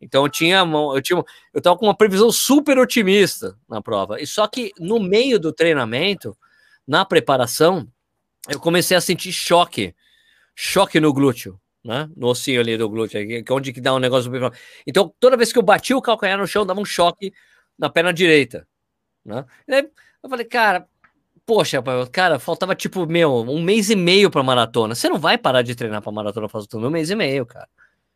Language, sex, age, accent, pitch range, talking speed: Portuguese, male, 20-39, Brazilian, 135-210 Hz, 195 wpm